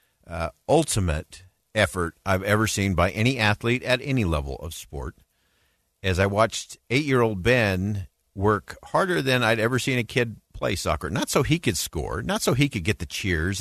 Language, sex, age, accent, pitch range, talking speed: English, male, 50-69, American, 80-110 Hz, 180 wpm